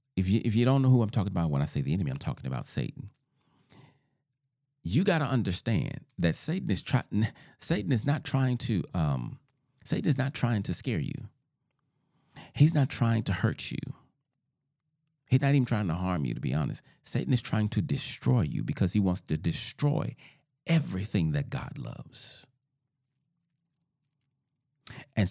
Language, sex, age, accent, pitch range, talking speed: English, male, 40-59, American, 125-155 Hz, 170 wpm